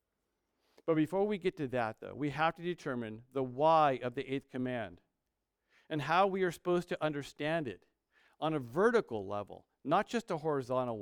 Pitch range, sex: 140-185 Hz, male